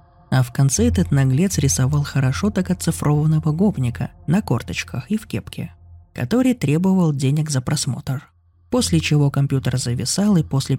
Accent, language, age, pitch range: native, Russian, 20-39, 125-170 Hz